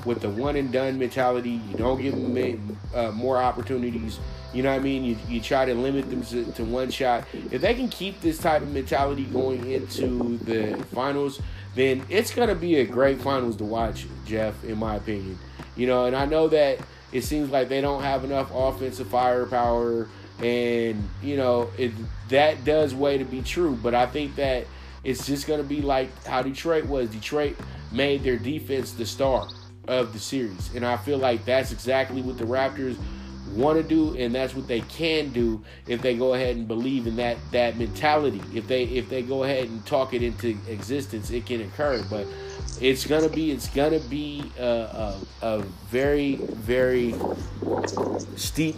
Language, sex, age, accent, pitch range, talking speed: English, male, 20-39, American, 110-135 Hz, 190 wpm